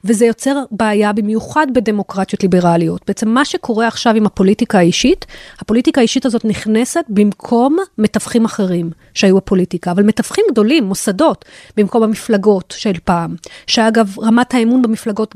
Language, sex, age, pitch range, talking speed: Hebrew, female, 30-49, 205-265 Hz, 135 wpm